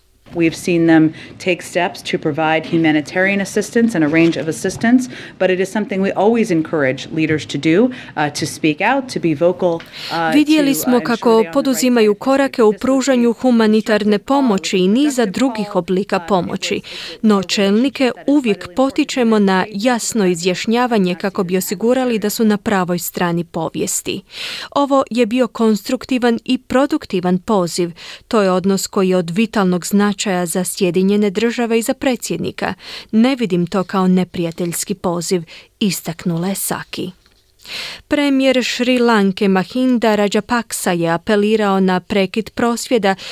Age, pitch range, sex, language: 30-49, 185-235 Hz, female, Croatian